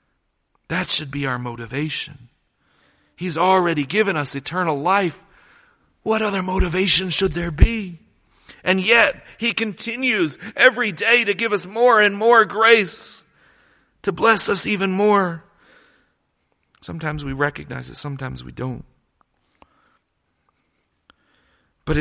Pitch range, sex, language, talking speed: 130-205 Hz, male, English, 115 wpm